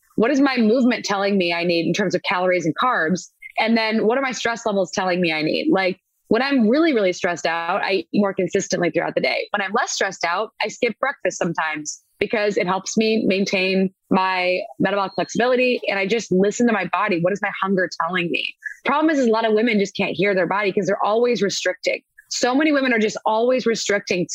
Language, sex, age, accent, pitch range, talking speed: English, female, 20-39, American, 190-240 Hz, 225 wpm